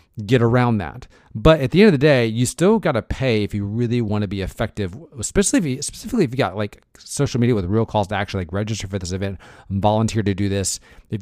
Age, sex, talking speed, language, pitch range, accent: 40-59, male, 245 wpm, English, 100-125 Hz, American